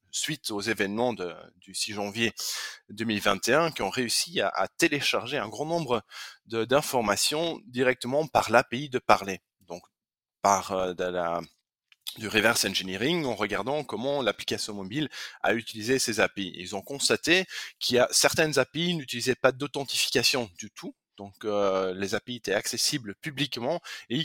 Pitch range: 100-135 Hz